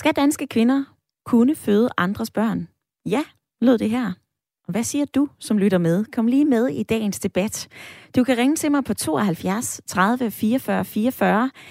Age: 20-39